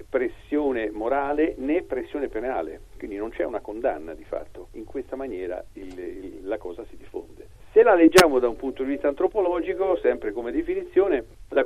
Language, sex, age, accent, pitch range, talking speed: Italian, male, 50-69, native, 250-410 Hz, 175 wpm